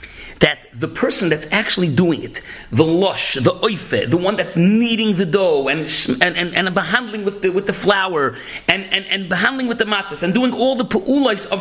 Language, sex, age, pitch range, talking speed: English, male, 40-59, 155-225 Hz, 210 wpm